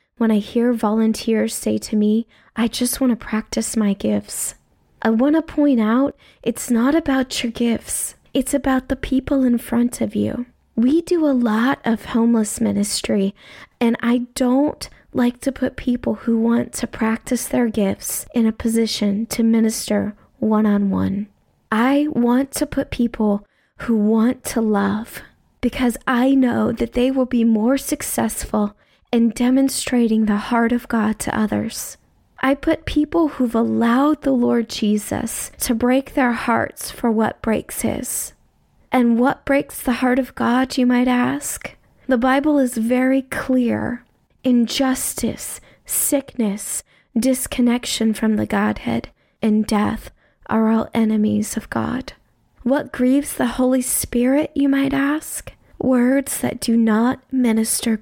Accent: American